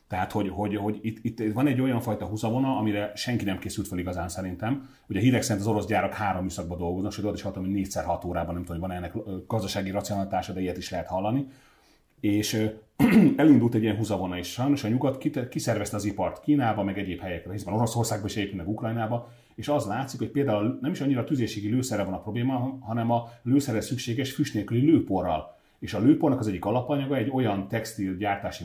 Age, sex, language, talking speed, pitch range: 30-49, male, Hungarian, 195 wpm, 100-125 Hz